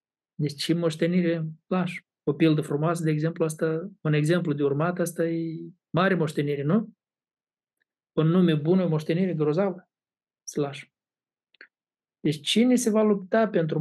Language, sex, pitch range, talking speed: Romanian, male, 150-195 Hz, 135 wpm